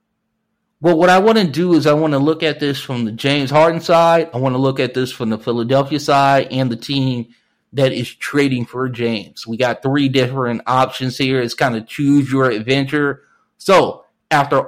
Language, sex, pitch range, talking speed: English, male, 125-155 Hz, 205 wpm